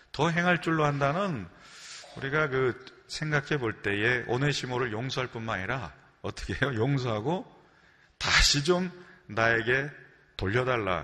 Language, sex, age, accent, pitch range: Korean, male, 30-49, native, 95-130 Hz